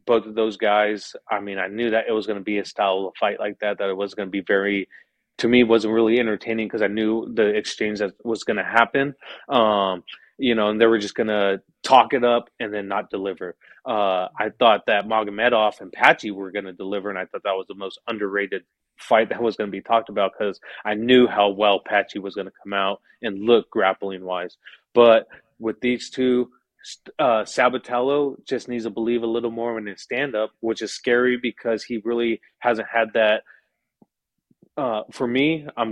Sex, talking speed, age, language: male, 215 wpm, 30-49, English